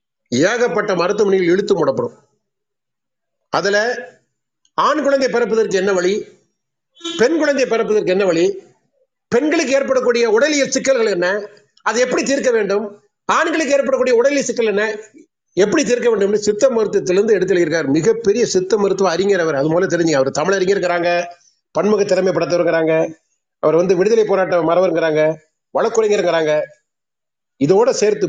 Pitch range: 165-255 Hz